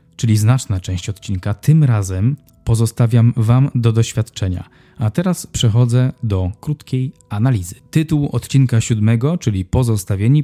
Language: Polish